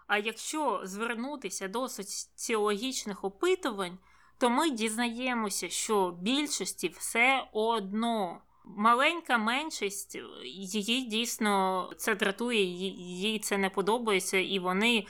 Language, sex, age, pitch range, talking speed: Ukrainian, female, 20-39, 195-245 Hz, 100 wpm